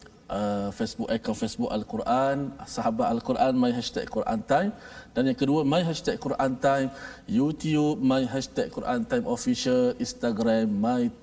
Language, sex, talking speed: Malayalam, male, 140 wpm